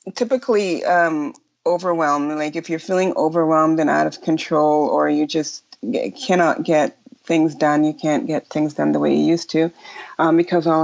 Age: 30-49